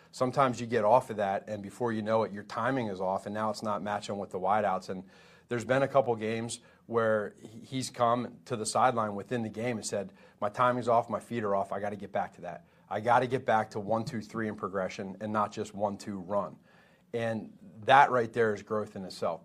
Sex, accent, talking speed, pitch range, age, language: male, American, 240 wpm, 105-120 Hz, 40-59, English